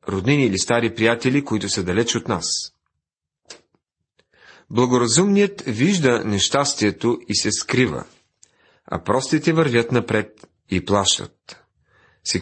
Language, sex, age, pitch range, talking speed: Bulgarian, male, 40-59, 105-150 Hz, 105 wpm